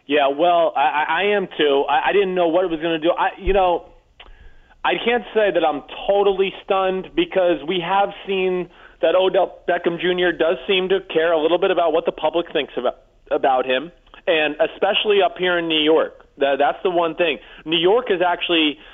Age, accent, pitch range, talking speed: 30-49, American, 160-190 Hz, 205 wpm